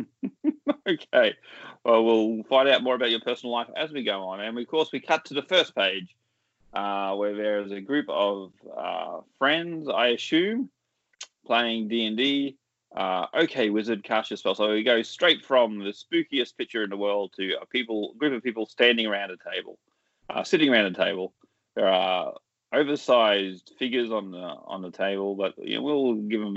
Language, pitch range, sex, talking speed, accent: English, 105-135 Hz, male, 190 wpm, Australian